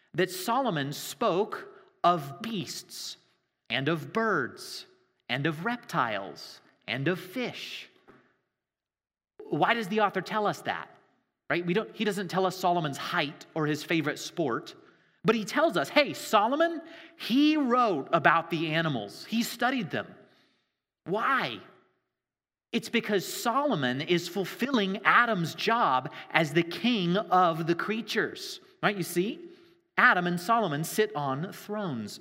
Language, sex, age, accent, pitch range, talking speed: English, male, 30-49, American, 160-230 Hz, 130 wpm